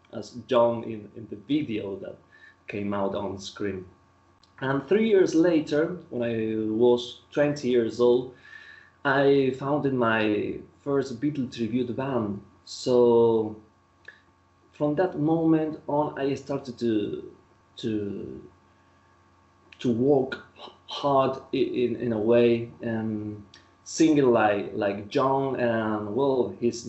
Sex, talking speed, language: male, 115 wpm, English